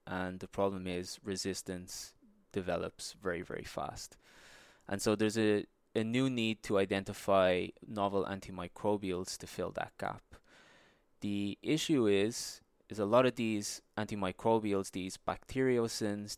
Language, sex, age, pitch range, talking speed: English, male, 20-39, 95-110 Hz, 130 wpm